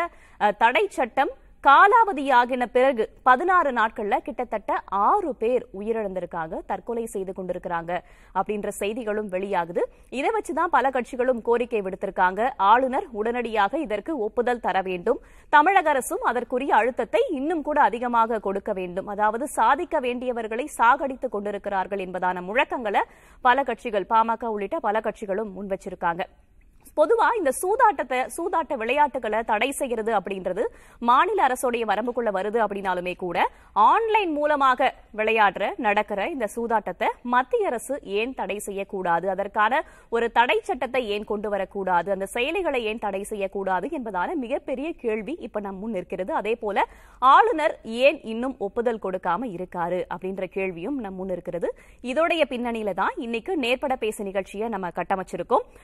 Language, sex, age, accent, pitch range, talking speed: Tamil, female, 20-39, native, 200-285 Hz, 115 wpm